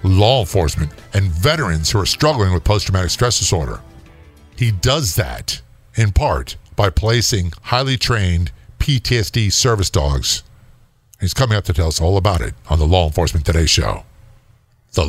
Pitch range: 100-140 Hz